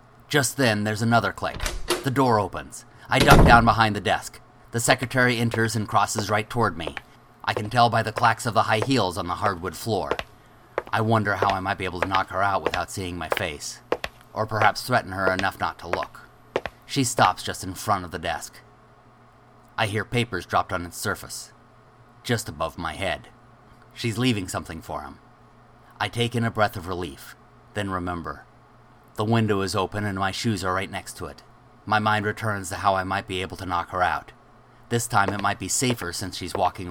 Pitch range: 95-120 Hz